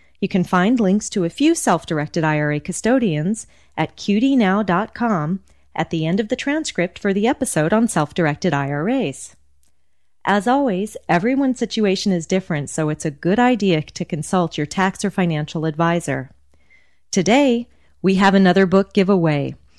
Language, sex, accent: English, female, American